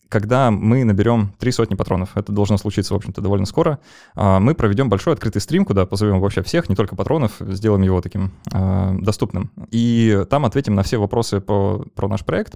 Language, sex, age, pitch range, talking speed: Russian, male, 20-39, 100-115 Hz, 185 wpm